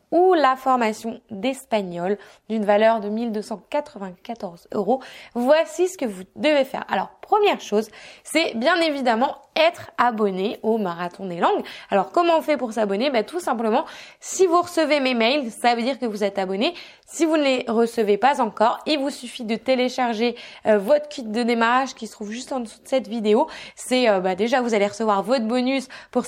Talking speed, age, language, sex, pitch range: 185 wpm, 20-39, French, female, 210-290 Hz